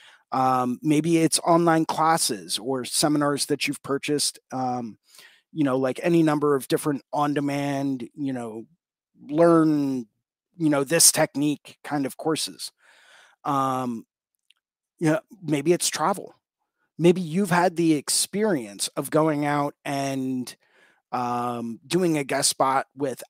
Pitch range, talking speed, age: 135-160 Hz, 130 wpm, 30-49